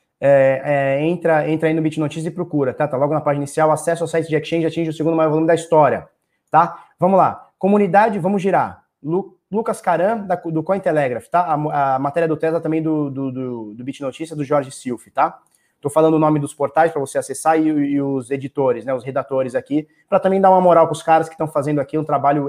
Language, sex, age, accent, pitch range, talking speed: Portuguese, male, 20-39, Brazilian, 140-180 Hz, 225 wpm